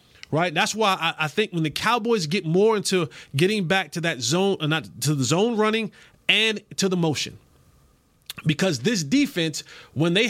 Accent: American